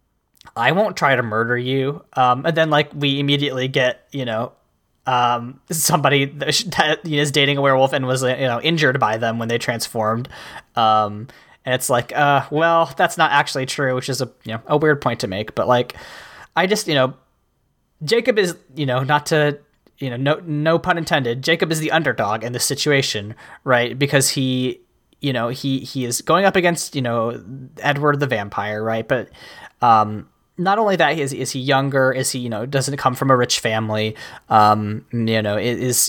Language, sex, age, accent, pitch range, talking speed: English, male, 20-39, American, 120-145 Hz, 195 wpm